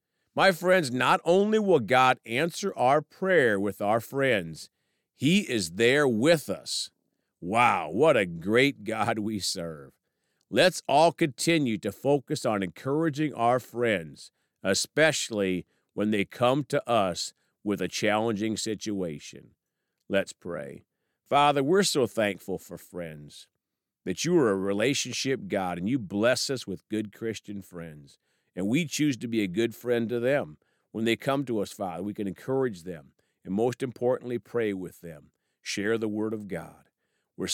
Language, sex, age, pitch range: English, male, 50-69, 100-150 Hz